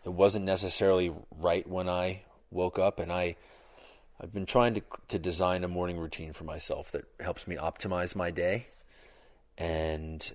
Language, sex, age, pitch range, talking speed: English, male, 30-49, 80-95 Hz, 160 wpm